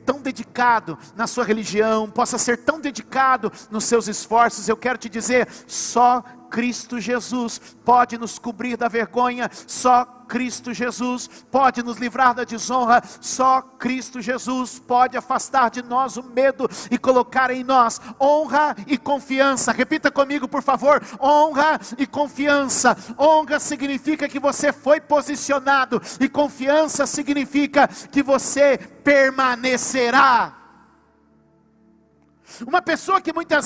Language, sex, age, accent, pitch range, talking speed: Portuguese, male, 50-69, Brazilian, 245-290 Hz, 125 wpm